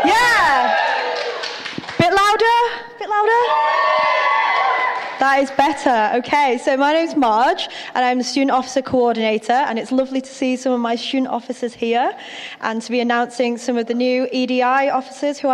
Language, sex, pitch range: English, female, 235-315 Hz